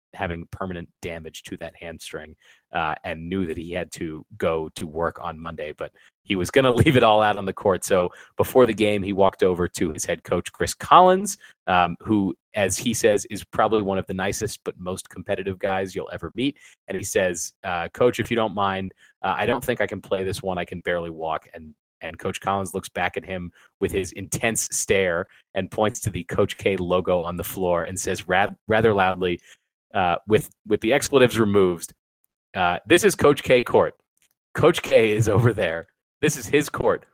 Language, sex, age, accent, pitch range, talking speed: English, male, 30-49, American, 90-115 Hz, 210 wpm